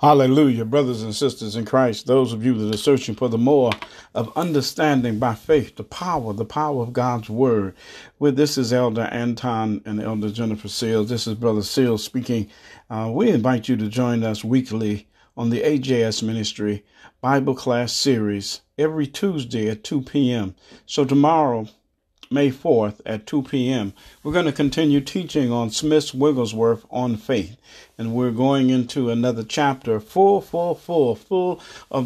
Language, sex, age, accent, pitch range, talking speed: English, male, 50-69, American, 115-145 Hz, 165 wpm